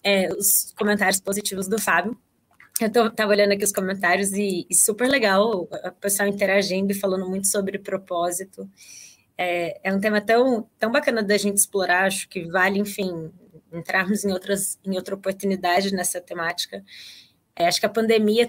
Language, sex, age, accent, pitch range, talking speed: Portuguese, female, 20-39, Brazilian, 185-210 Hz, 165 wpm